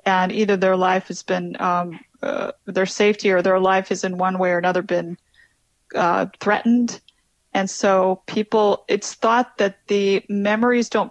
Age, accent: 30-49, American